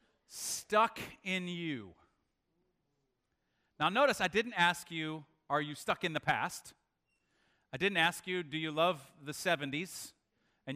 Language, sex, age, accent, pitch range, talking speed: English, male, 40-59, American, 135-180 Hz, 140 wpm